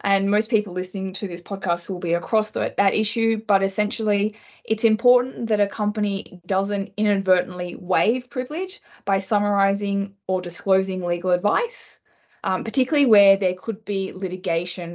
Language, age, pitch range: English, 20-39, 180-215 Hz